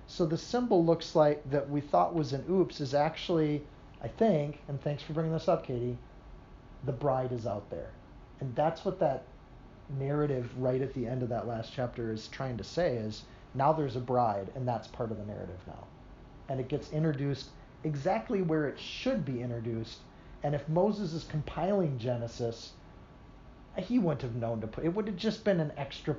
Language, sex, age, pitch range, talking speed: English, male, 40-59, 120-155 Hz, 195 wpm